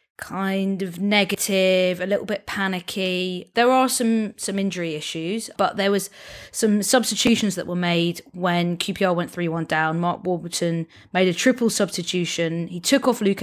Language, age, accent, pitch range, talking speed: English, 20-39, British, 170-195 Hz, 160 wpm